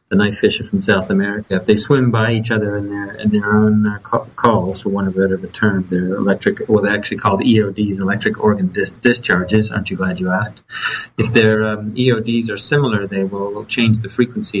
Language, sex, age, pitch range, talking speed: English, male, 40-59, 100-115 Hz, 220 wpm